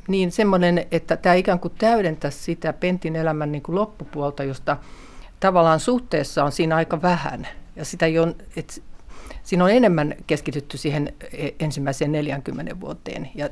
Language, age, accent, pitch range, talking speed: Finnish, 50-69, native, 140-170 Hz, 140 wpm